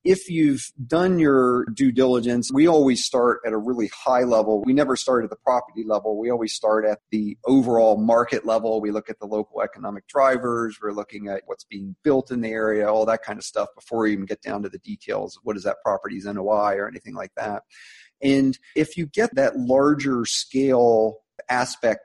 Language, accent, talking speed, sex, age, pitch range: English, American, 205 wpm, male, 40-59, 110-140 Hz